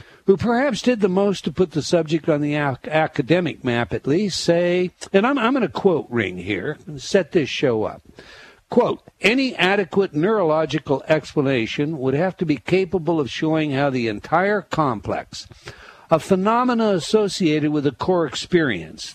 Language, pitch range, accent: English, 135-195 Hz, American